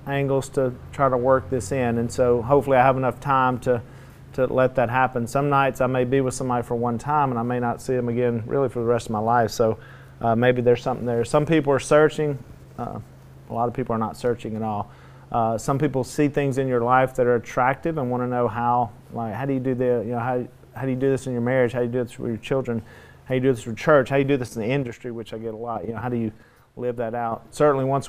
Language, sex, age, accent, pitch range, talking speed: English, male, 40-59, American, 120-135 Hz, 285 wpm